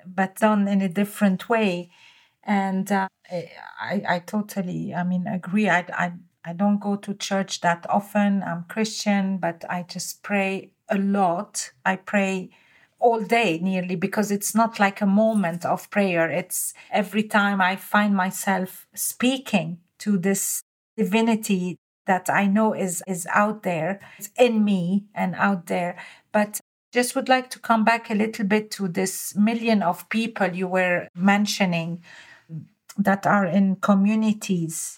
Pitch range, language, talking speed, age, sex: 190-225 Hz, English, 155 wpm, 40-59, female